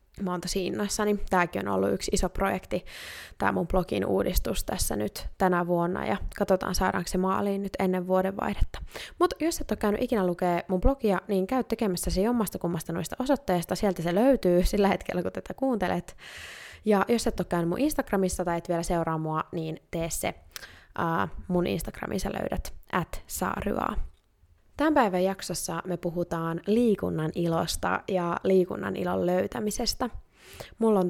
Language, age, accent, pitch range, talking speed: Finnish, 20-39, native, 170-195 Hz, 160 wpm